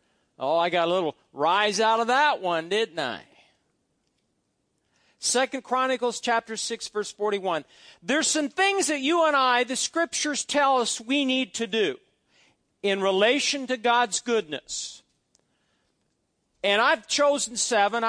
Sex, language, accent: male, English, American